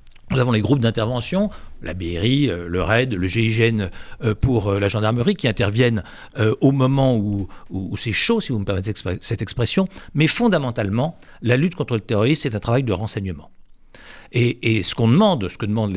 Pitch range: 105-140 Hz